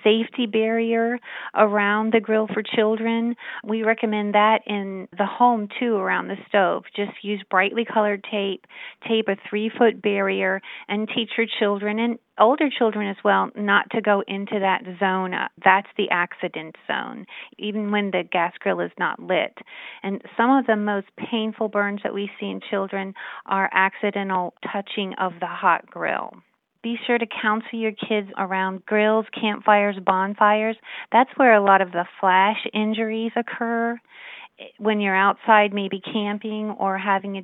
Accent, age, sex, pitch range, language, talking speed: American, 40-59, female, 195-225 Hz, English, 160 wpm